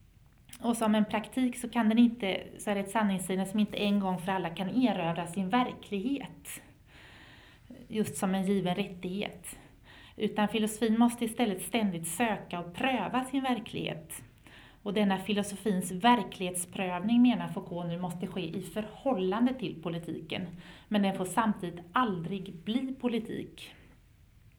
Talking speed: 140 wpm